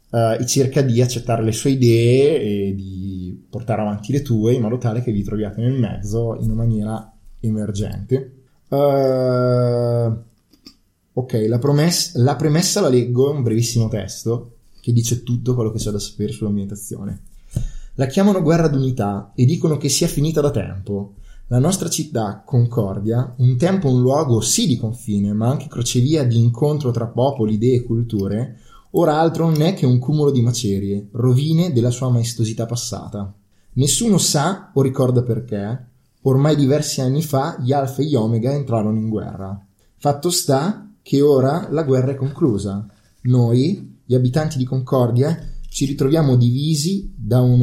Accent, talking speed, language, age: native, 160 wpm, Italian, 20-39